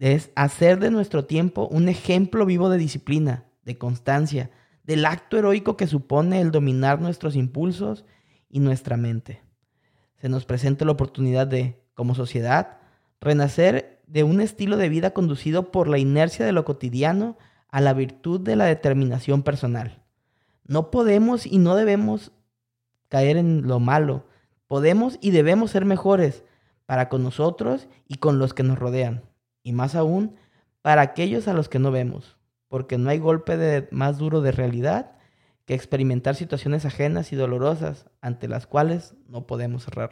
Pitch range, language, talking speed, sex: 130-170 Hz, Spanish, 160 wpm, male